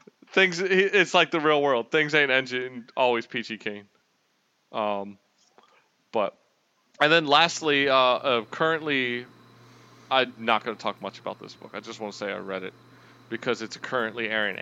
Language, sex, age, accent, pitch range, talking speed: English, male, 20-39, American, 120-180 Hz, 165 wpm